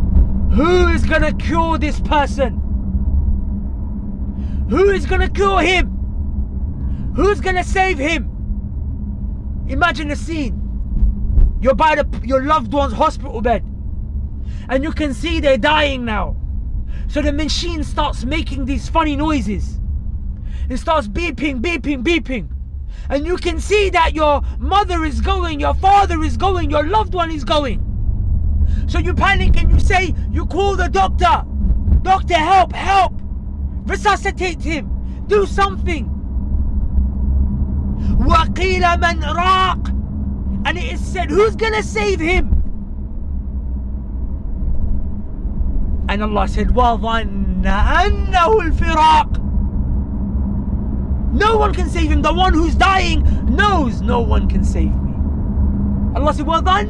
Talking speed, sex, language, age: 115 wpm, male, English, 20-39